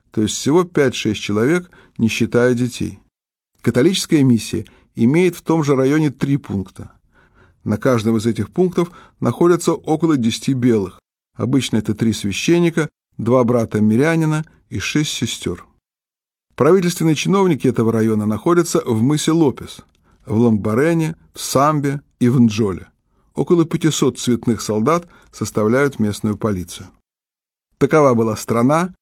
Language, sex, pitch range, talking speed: Russian, male, 110-155 Hz, 125 wpm